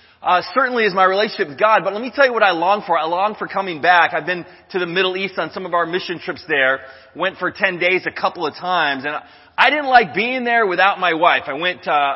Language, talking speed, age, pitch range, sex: English, 265 wpm, 20-39, 165-225 Hz, male